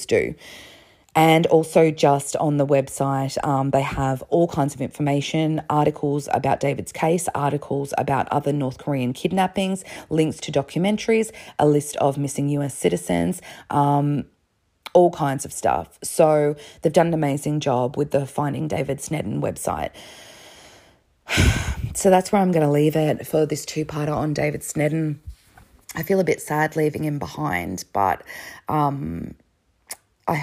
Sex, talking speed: female, 150 wpm